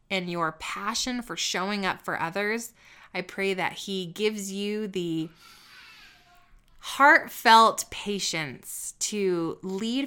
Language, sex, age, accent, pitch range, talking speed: English, female, 20-39, American, 180-215 Hz, 115 wpm